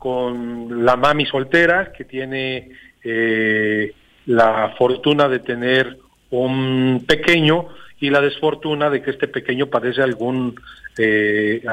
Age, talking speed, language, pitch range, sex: 40-59, 120 wpm, Spanish, 125-160 Hz, male